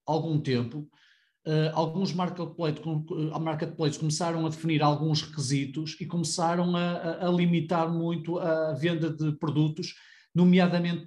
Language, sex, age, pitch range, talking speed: Portuguese, male, 40-59, 150-185 Hz, 110 wpm